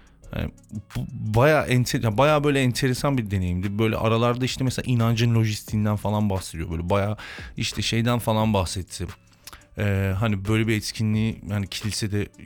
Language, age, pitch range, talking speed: Turkish, 30-49, 95-115 Hz, 140 wpm